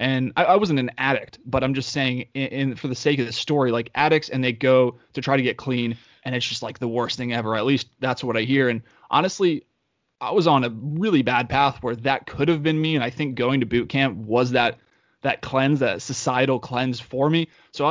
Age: 20-39